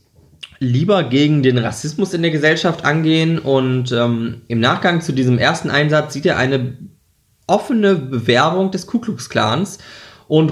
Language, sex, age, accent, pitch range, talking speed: German, male, 20-39, German, 120-160 Hz, 150 wpm